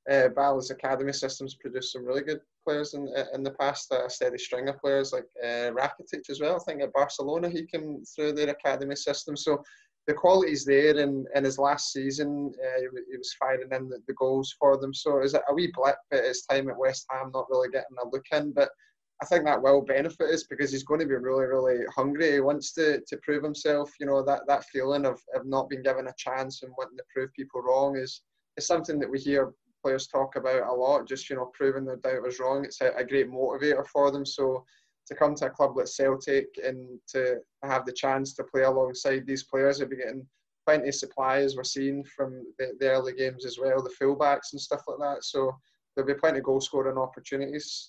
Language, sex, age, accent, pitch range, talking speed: English, male, 20-39, British, 130-145 Hz, 230 wpm